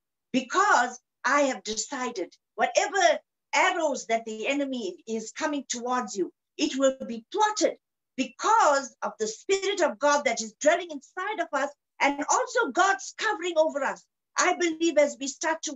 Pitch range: 250-335 Hz